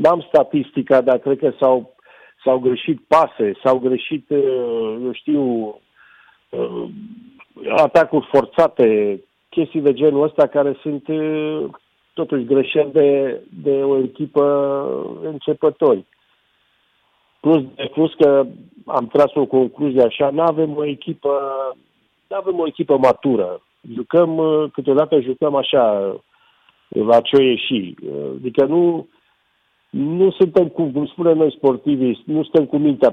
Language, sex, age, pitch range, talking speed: Romanian, male, 50-69, 140-190 Hz, 115 wpm